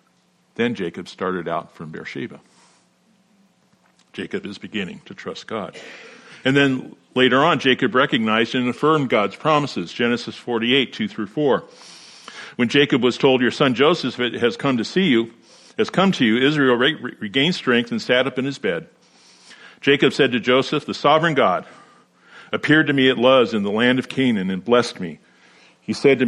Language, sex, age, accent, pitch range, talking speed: English, male, 50-69, American, 110-140 Hz, 175 wpm